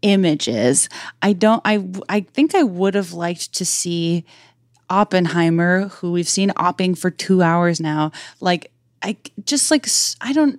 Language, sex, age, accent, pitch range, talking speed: English, female, 20-39, American, 170-210 Hz, 155 wpm